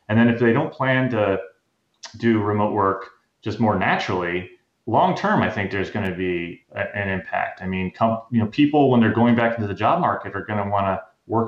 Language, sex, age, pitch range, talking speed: English, male, 30-49, 95-115 Hz, 210 wpm